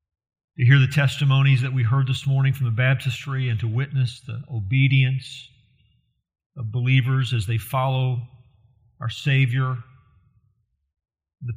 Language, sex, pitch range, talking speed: English, male, 115-135 Hz, 130 wpm